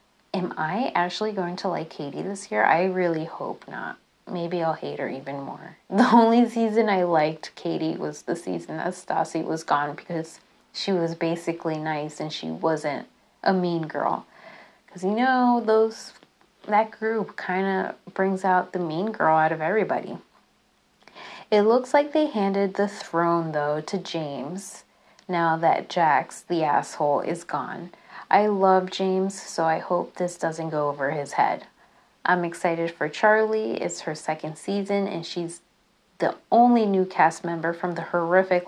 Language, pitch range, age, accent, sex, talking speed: English, 160-200 Hz, 30-49, American, female, 165 wpm